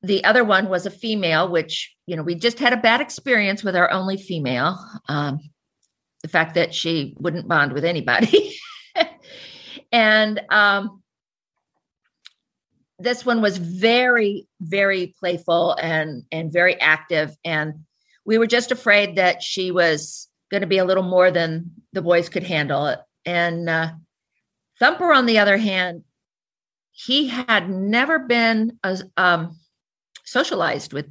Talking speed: 145 wpm